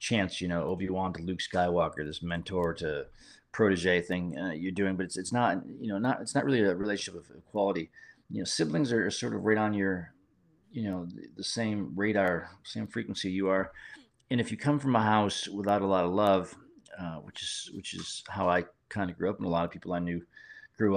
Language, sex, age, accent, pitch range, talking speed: English, male, 40-59, American, 90-110 Hz, 230 wpm